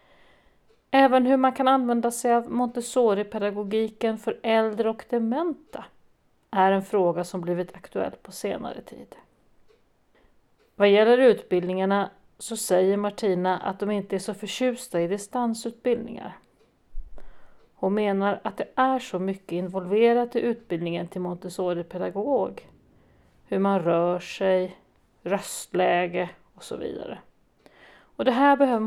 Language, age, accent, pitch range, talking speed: Swedish, 40-59, native, 185-245 Hz, 125 wpm